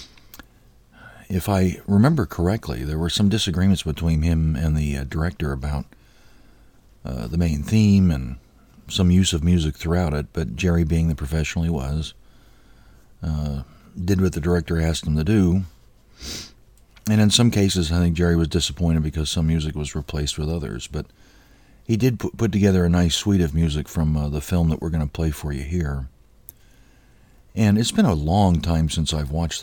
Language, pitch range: English, 75-100 Hz